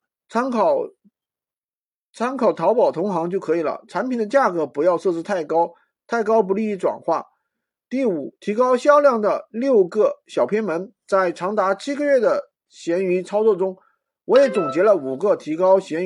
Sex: male